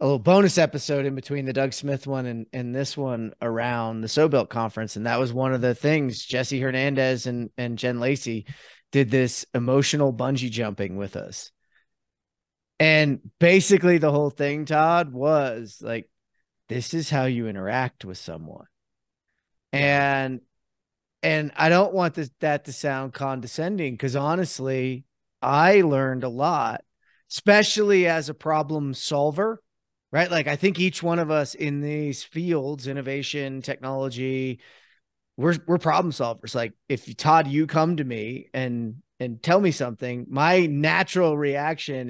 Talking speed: 155 wpm